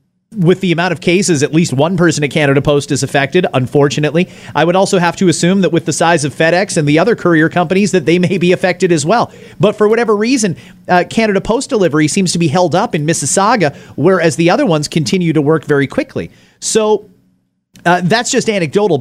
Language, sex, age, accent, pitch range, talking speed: English, male, 40-59, American, 145-195 Hz, 215 wpm